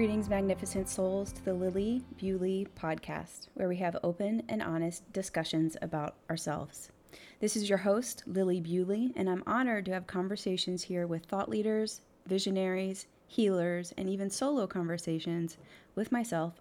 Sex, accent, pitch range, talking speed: female, American, 160-195 Hz, 150 wpm